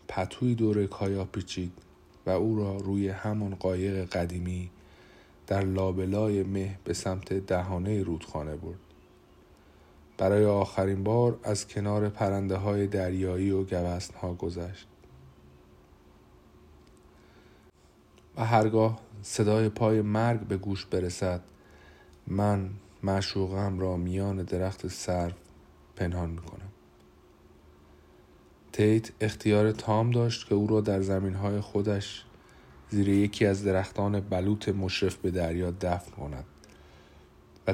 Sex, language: male, Persian